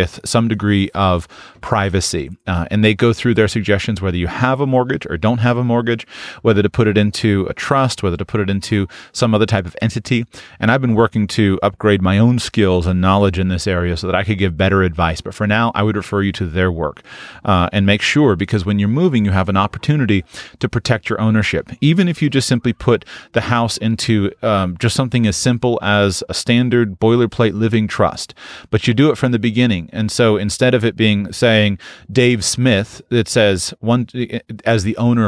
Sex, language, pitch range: male, English, 100-120 Hz